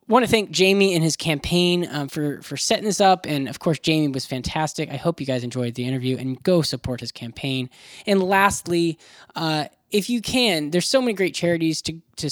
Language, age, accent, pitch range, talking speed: English, 10-29, American, 135-165 Hz, 215 wpm